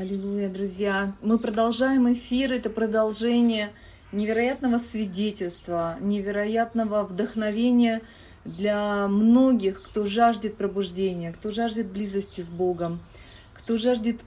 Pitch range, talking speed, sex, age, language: 200-230 Hz, 95 wpm, female, 30-49, Russian